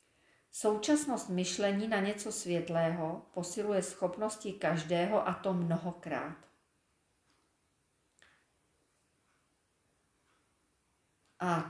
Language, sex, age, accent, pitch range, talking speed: Czech, female, 40-59, native, 175-215 Hz, 60 wpm